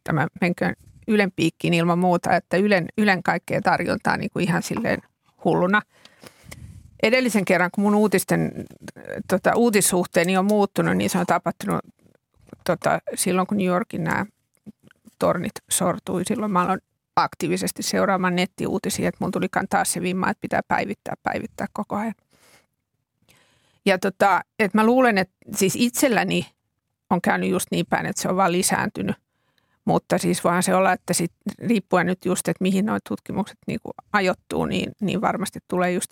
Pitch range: 180-205 Hz